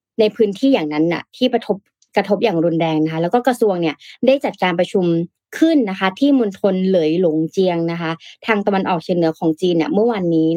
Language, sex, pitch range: Thai, female, 175-240 Hz